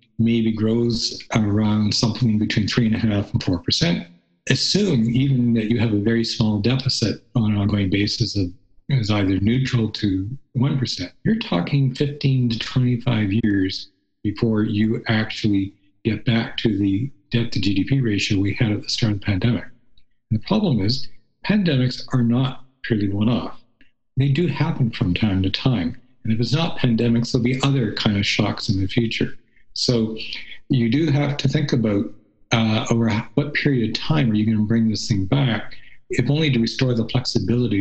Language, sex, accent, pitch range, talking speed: English, male, American, 105-130 Hz, 180 wpm